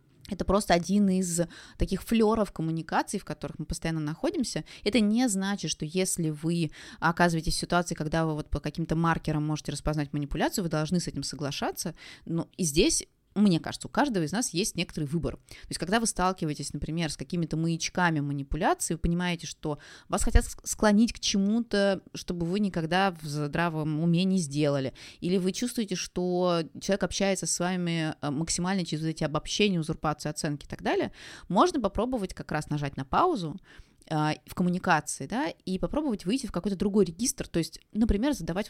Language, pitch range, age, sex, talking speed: Russian, 155-205 Hz, 20-39, female, 170 wpm